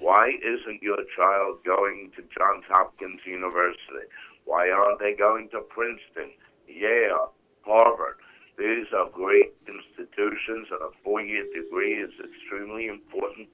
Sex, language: male, English